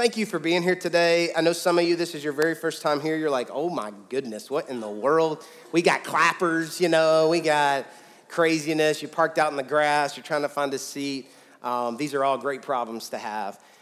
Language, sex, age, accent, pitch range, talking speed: English, male, 30-49, American, 145-175 Hz, 240 wpm